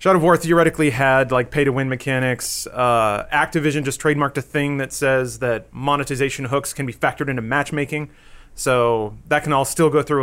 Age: 30-49